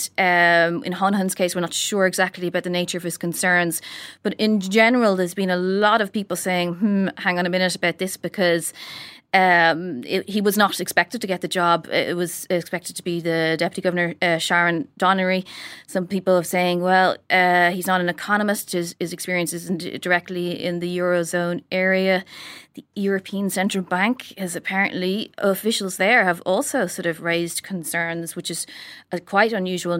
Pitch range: 175-195 Hz